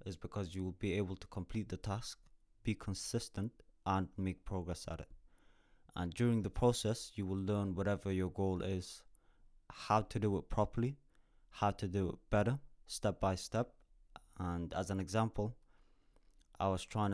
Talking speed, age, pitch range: 170 wpm, 20-39, 90-105 Hz